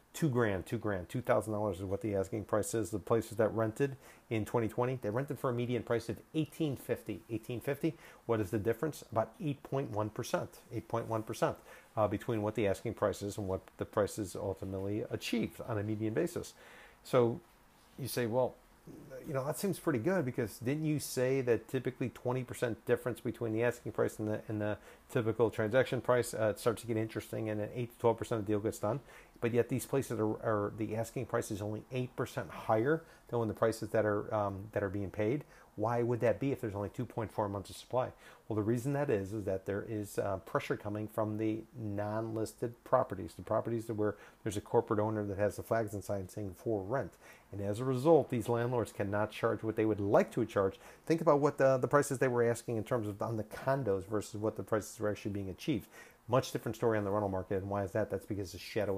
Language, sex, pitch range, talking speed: English, male, 105-125 Hz, 220 wpm